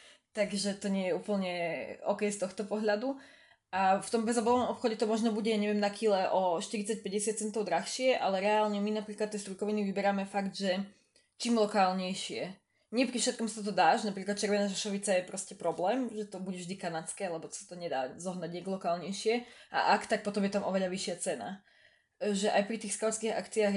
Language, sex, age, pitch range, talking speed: Slovak, female, 20-39, 185-210 Hz, 185 wpm